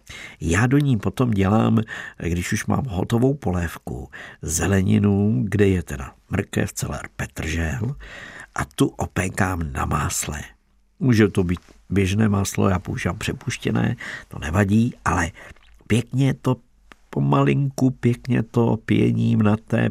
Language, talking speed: Czech, 125 wpm